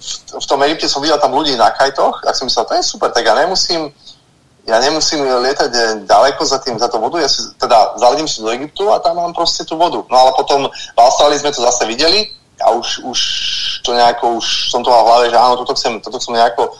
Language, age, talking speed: Slovak, 30-49, 230 wpm